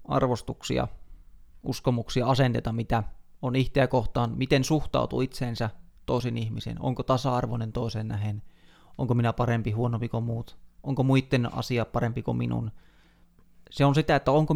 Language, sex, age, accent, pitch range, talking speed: Finnish, male, 30-49, native, 115-145 Hz, 135 wpm